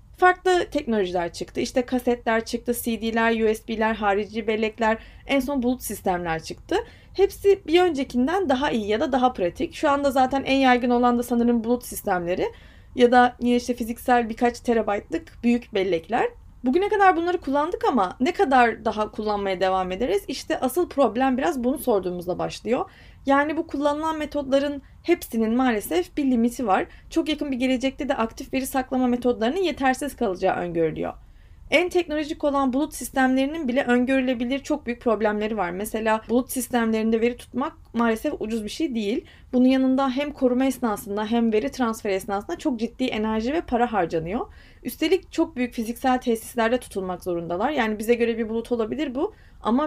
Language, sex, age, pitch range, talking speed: Turkish, female, 30-49, 225-280 Hz, 160 wpm